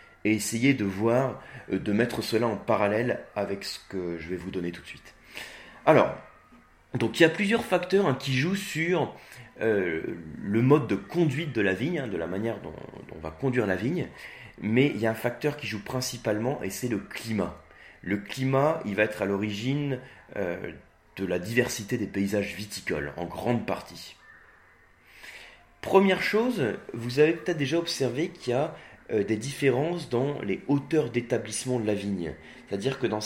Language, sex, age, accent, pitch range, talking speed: French, male, 30-49, French, 100-140 Hz, 180 wpm